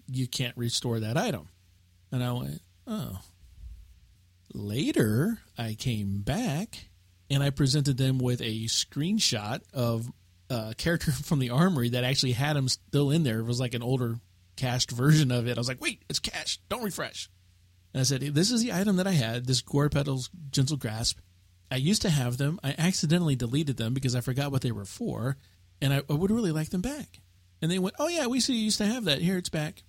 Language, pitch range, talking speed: English, 100-150 Hz, 205 wpm